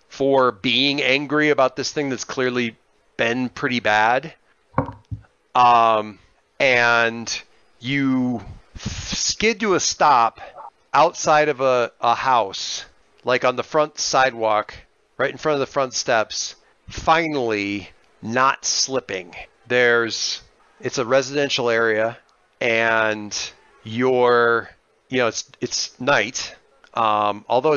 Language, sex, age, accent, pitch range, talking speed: English, male, 40-59, American, 115-140 Hz, 115 wpm